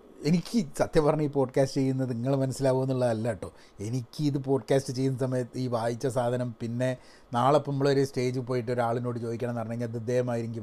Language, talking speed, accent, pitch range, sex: Malayalam, 160 wpm, native, 120-150 Hz, male